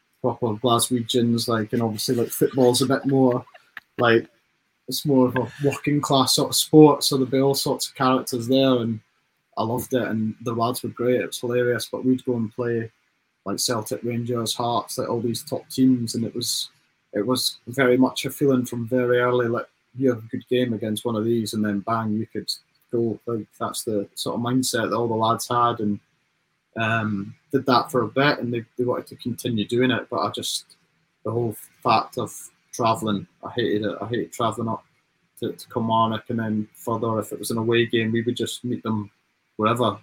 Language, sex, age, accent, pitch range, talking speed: English, male, 20-39, British, 115-130 Hz, 210 wpm